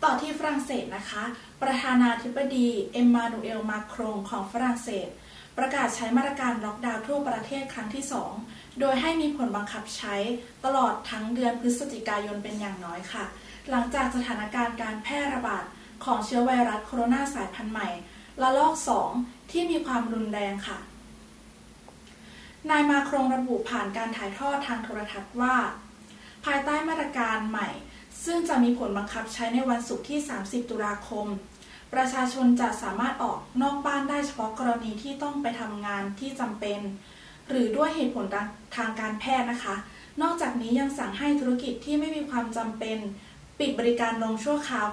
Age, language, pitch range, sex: 20-39, Thai, 215-270 Hz, female